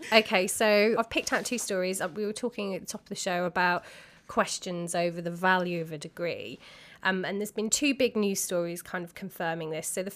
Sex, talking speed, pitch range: female, 225 wpm, 175-210 Hz